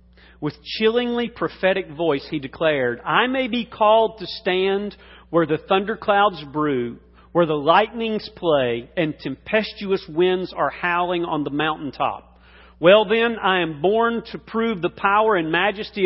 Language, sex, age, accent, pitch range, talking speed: English, male, 40-59, American, 145-210 Hz, 145 wpm